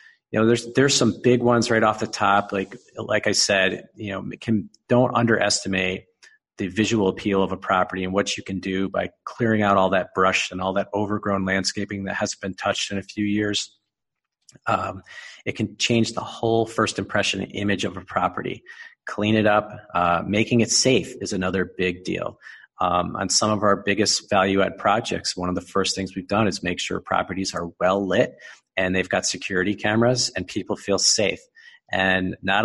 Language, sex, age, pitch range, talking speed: English, male, 40-59, 95-105 Hz, 195 wpm